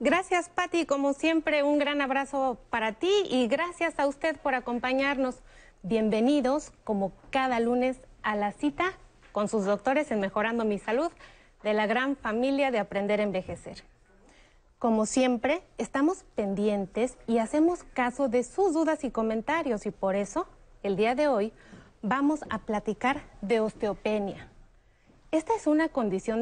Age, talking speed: 30-49, 150 wpm